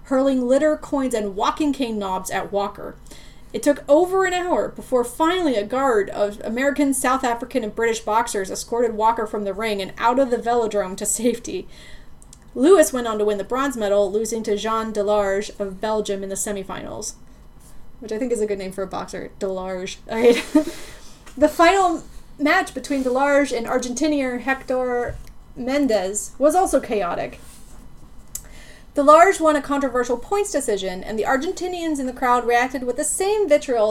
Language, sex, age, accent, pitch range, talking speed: English, female, 30-49, American, 215-295 Hz, 170 wpm